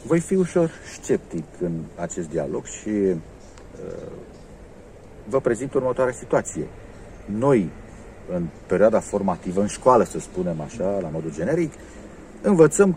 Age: 50-69